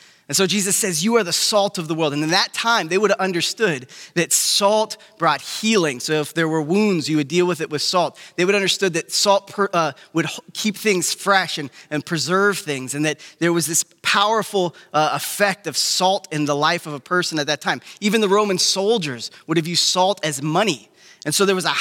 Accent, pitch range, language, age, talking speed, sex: American, 155-200 Hz, English, 20-39, 230 wpm, male